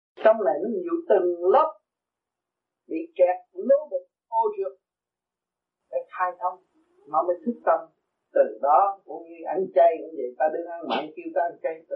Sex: male